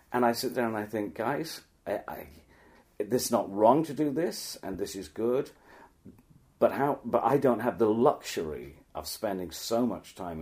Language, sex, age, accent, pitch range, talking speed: English, male, 40-59, British, 85-115 Hz, 185 wpm